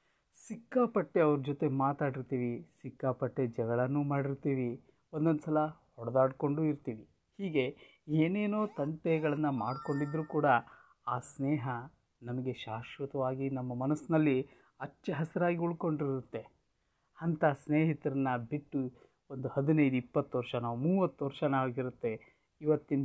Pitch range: 130-160 Hz